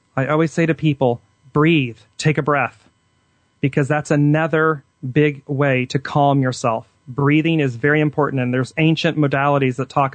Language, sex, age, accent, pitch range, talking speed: English, male, 30-49, American, 125-150 Hz, 160 wpm